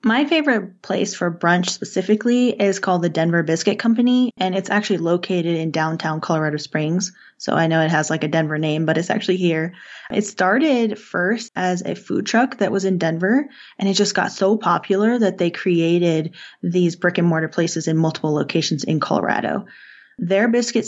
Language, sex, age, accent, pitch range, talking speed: English, female, 20-39, American, 165-205 Hz, 185 wpm